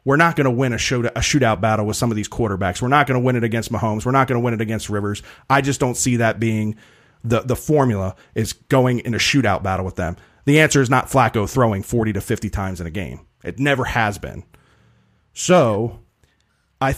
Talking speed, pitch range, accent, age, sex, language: 230 wpm, 110-150 Hz, American, 40-59, male, English